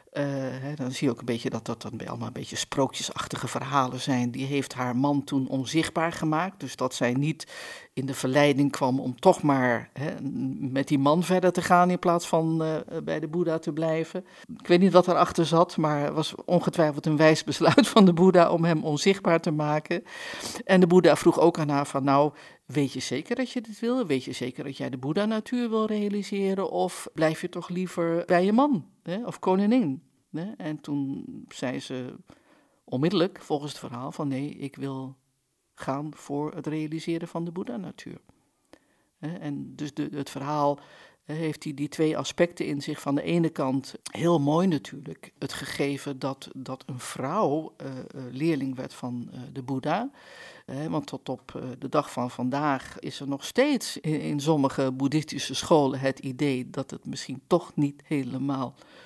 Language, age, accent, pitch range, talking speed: Dutch, 50-69, Dutch, 135-175 Hz, 180 wpm